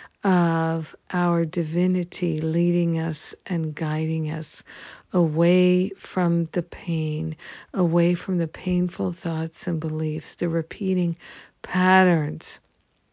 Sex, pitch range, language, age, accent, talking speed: female, 165-185 Hz, English, 50-69, American, 100 wpm